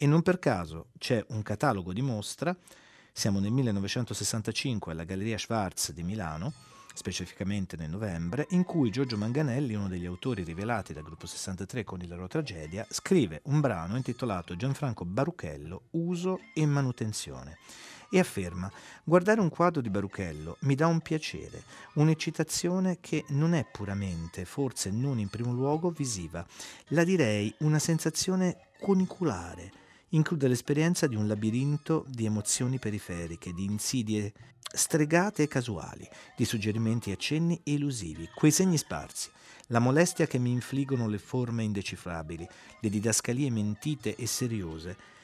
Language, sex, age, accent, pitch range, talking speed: Italian, male, 40-59, native, 100-150 Hz, 140 wpm